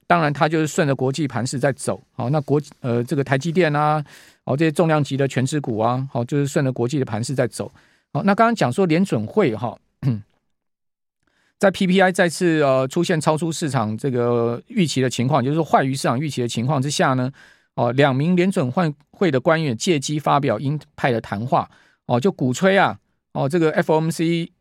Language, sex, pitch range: Chinese, male, 130-175 Hz